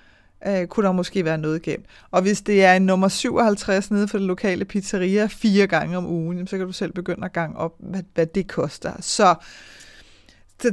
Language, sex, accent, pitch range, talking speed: Danish, female, native, 185-220 Hz, 195 wpm